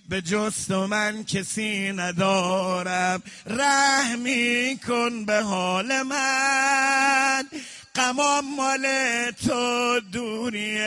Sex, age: male, 50-69